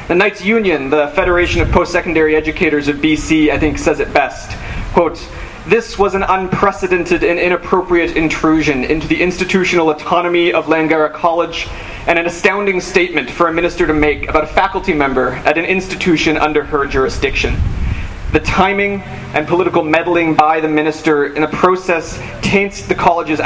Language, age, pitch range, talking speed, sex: English, 30-49, 150-180 Hz, 160 wpm, male